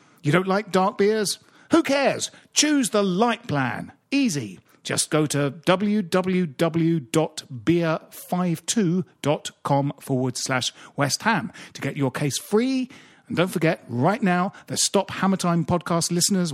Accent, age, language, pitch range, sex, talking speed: British, 40-59, English, 155-210 Hz, male, 130 wpm